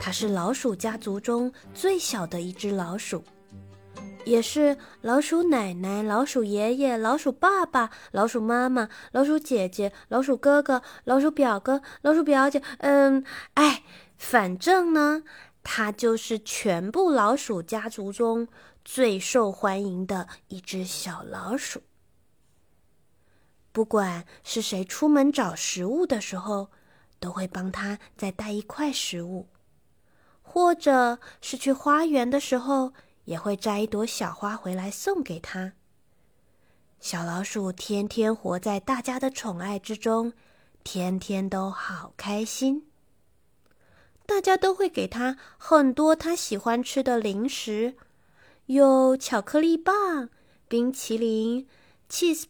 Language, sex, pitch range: Chinese, female, 195-275 Hz